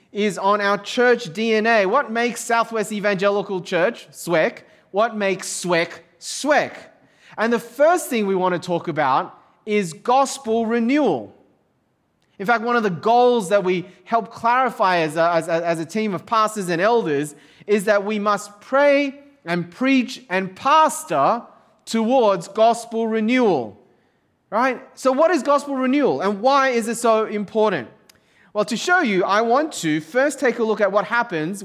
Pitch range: 170-235 Hz